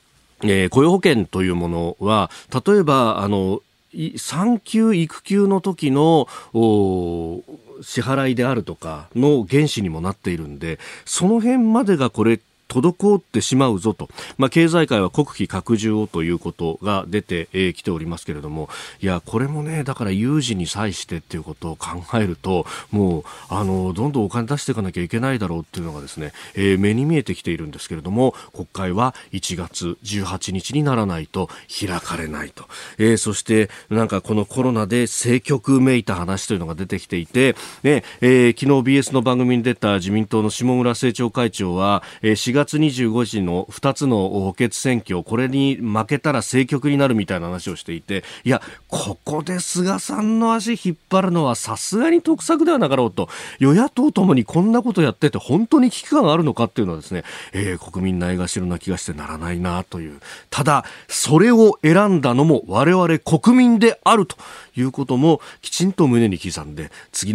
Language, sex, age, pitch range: Japanese, male, 40-59, 95-145 Hz